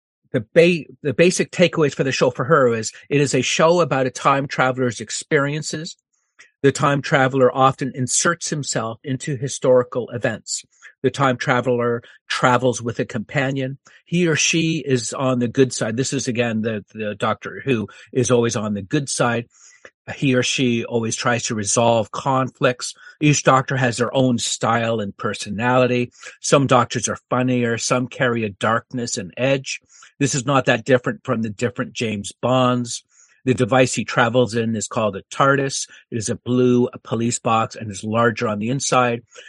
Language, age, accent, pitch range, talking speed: English, 50-69, American, 115-135 Hz, 170 wpm